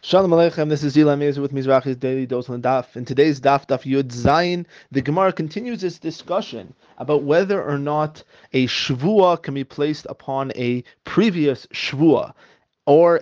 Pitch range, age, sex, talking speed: 135-165 Hz, 30-49, male, 155 wpm